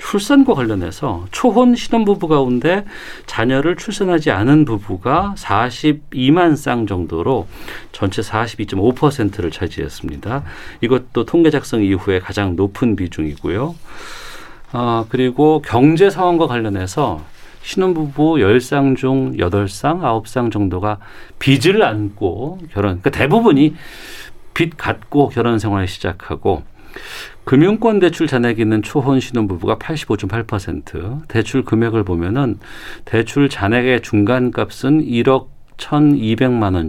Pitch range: 100-140 Hz